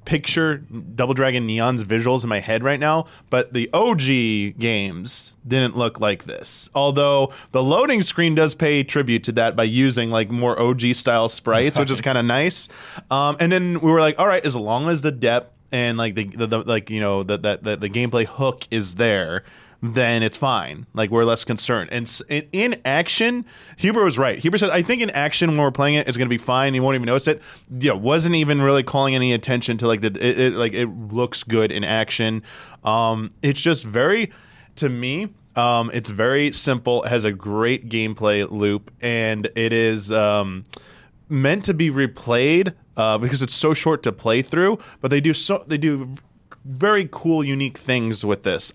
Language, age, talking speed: English, 20-39, 200 wpm